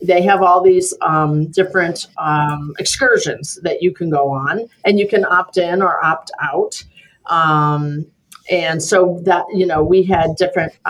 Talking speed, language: 165 wpm, English